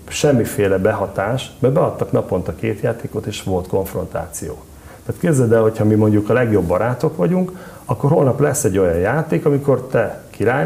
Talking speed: 170 wpm